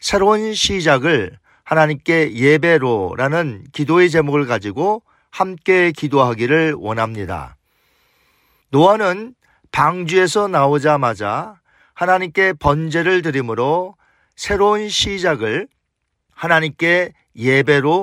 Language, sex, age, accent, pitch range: Korean, male, 40-59, native, 135-185 Hz